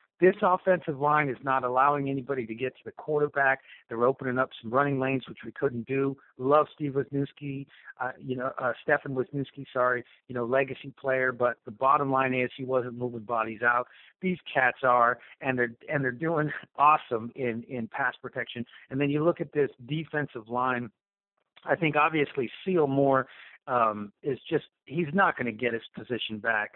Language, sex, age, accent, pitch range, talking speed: English, male, 50-69, American, 125-150 Hz, 185 wpm